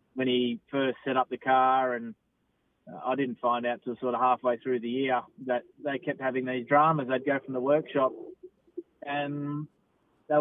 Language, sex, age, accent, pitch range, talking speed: English, male, 20-39, Australian, 125-145 Hz, 185 wpm